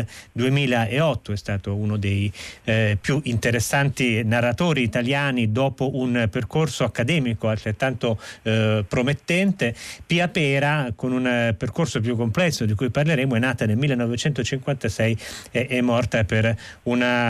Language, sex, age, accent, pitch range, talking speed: Italian, male, 30-49, native, 110-135 Hz, 130 wpm